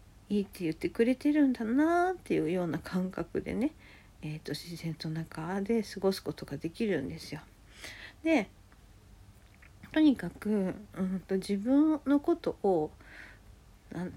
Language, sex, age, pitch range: Japanese, female, 50-69, 160-220 Hz